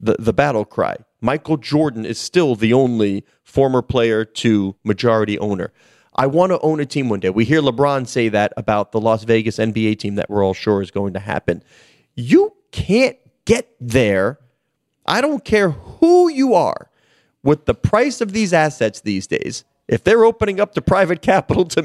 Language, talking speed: English, 185 wpm